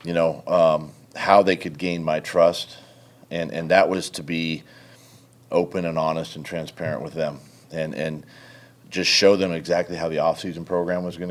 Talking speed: 180 wpm